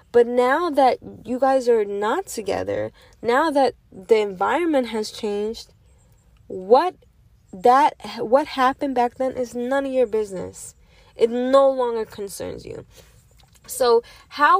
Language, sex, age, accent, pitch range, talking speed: English, female, 10-29, American, 210-290 Hz, 130 wpm